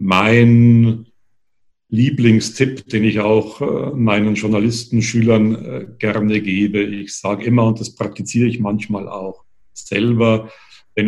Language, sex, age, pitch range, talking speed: German, male, 50-69, 100-115 Hz, 110 wpm